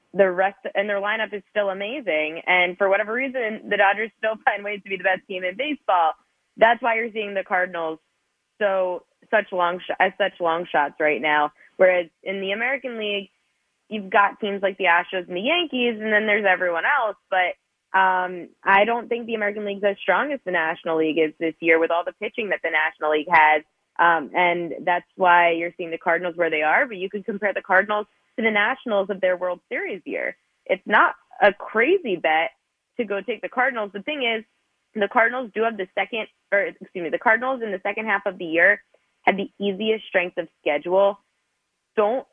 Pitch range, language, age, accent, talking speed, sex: 170-210 Hz, English, 20-39, American, 210 wpm, female